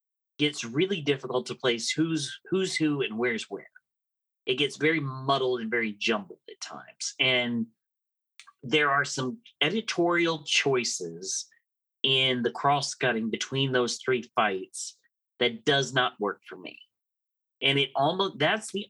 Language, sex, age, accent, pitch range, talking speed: English, male, 30-49, American, 120-170 Hz, 140 wpm